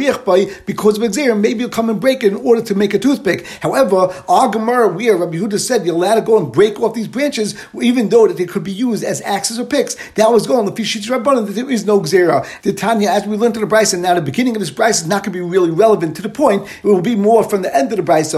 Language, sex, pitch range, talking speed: English, male, 200-240 Hz, 290 wpm